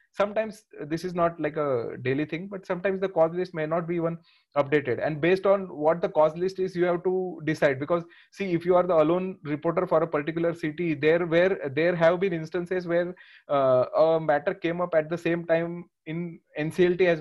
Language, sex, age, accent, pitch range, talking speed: English, male, 30-49, Indian, 150-180 Hz, 215 wpm